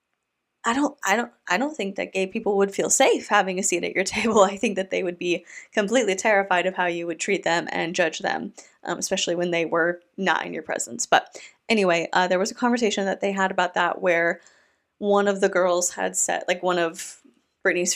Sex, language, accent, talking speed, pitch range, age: female, English, American, 225 wpm, 175-205 Hz, 20-39